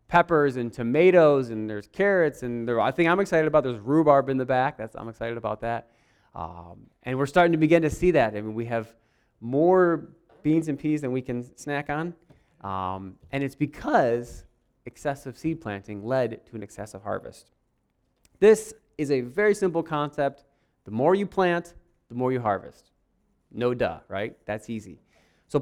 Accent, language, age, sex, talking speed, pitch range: American, English, 30-49, male, 185 wpm, 115-160 Hz